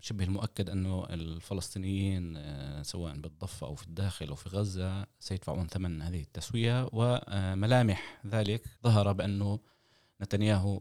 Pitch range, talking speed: 90-110 Hz, 115 wpm